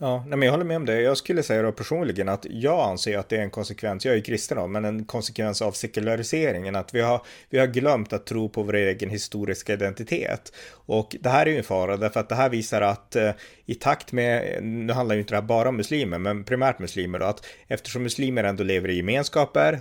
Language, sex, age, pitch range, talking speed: Swedish, male, 30-49, 100-120 Hz, 240 wpm